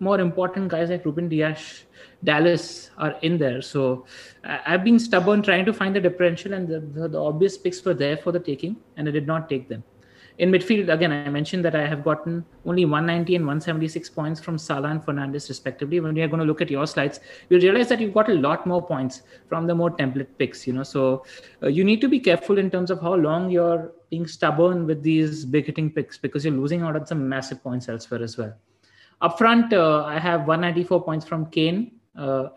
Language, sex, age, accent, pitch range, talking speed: English, male, 20-39, Indian, 145-175 Hz, 225 wpm